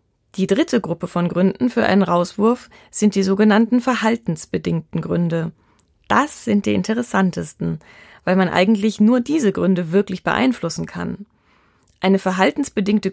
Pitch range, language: 175-215 Hz, German